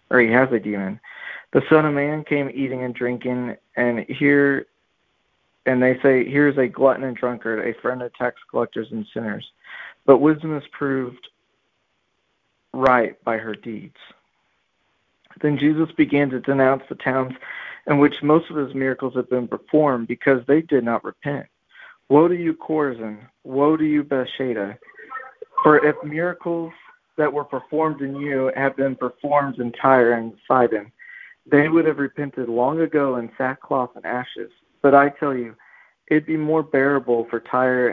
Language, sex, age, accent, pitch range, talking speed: English, male, 50-69, American, 125-145 Hz, 160 wpm